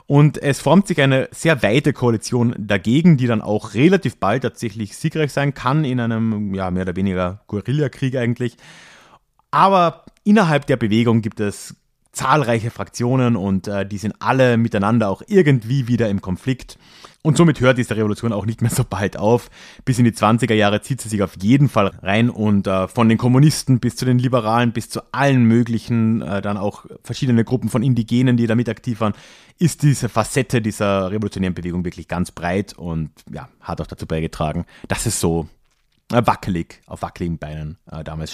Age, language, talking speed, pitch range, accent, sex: 30-49, German, 185 wpm, 100-140 Hz, German, male